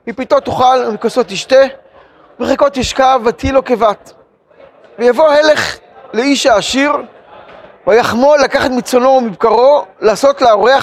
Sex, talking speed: male, 110 wpm